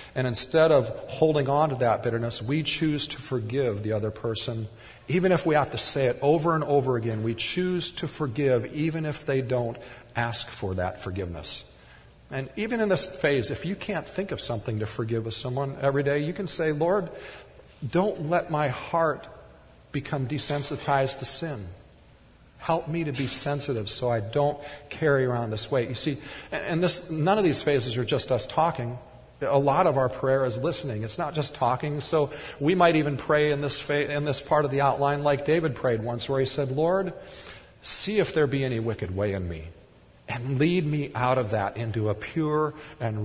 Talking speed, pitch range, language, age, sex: 200 wpm, 115-150 Hz, English, 40-59, male